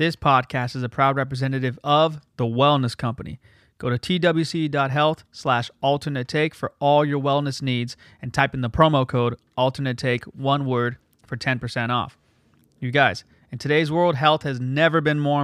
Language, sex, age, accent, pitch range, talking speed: English, male, 30-49, American, 125-150 Hz, 165 wpm